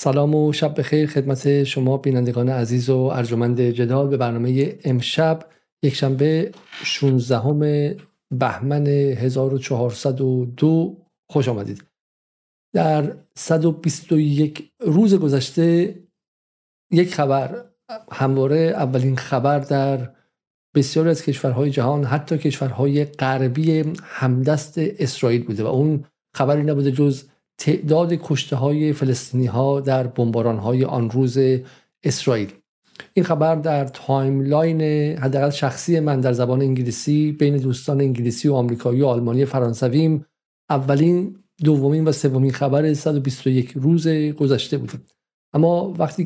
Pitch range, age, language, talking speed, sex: 130-155 Hz, 50-69, Persian, 115 wpm, male